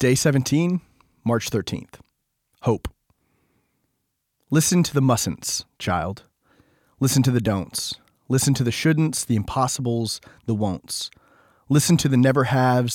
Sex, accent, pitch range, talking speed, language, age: male, American, 115-145 Hz, 120 wpm, English, 30-49